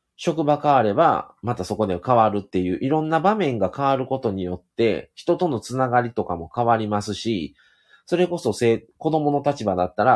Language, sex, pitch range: Japanese, male, 100-155 Hz